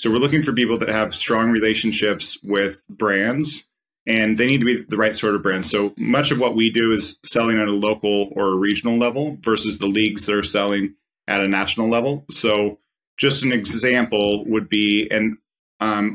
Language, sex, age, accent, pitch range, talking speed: English, male, 30-49, American, 105-125 Hz, 195 wpm